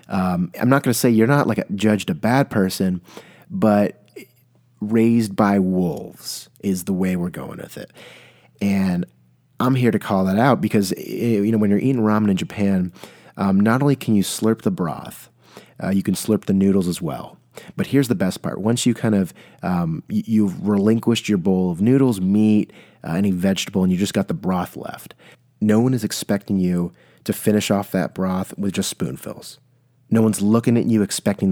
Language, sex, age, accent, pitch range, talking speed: English, male, 30-49, American, 95-125 Hz, 200 wpm